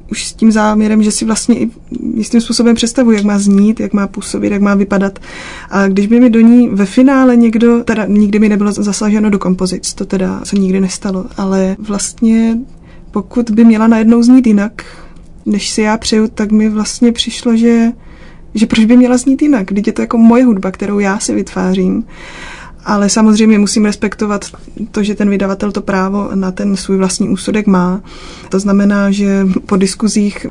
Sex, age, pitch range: female, 20-39, 195-230 Hz